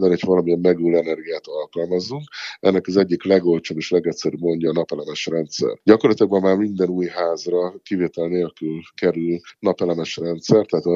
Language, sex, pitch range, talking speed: Hungarian, male, 85-95 Hz, 155 wpm